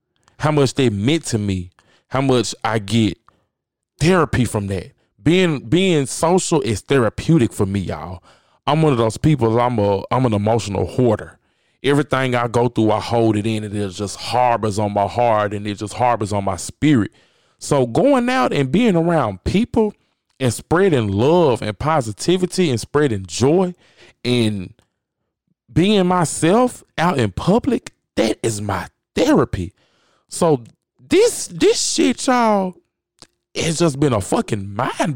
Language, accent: English, American